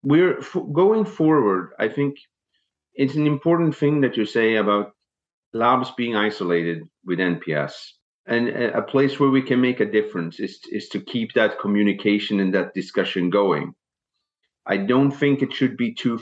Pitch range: 100-140 Hz